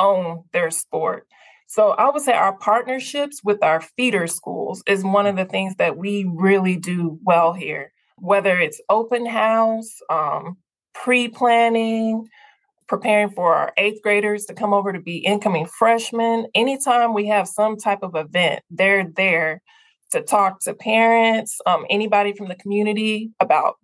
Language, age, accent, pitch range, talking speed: English, 20-39, American, 190-225 Hz, 155 wpm